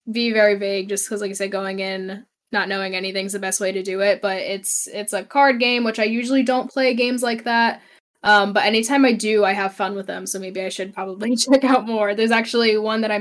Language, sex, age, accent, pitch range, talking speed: English, female, 10-29, American, 200-240 Hz, 255 wpm